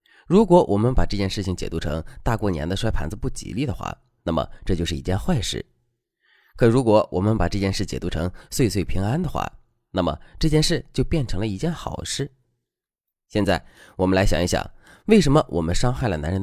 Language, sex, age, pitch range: Chinese, male, 20-39, 85-130 Hz